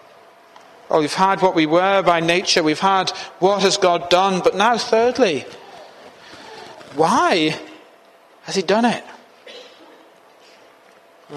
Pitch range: 180-255 Hz